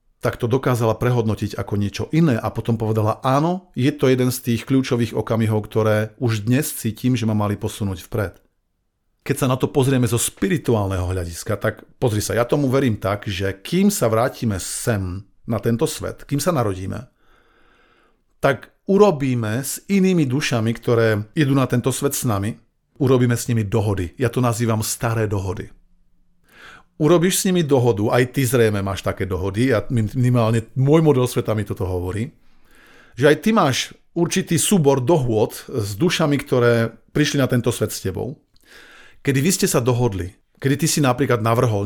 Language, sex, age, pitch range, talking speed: Slovak, male, 50-69, 105-135 Hz, 170 wpm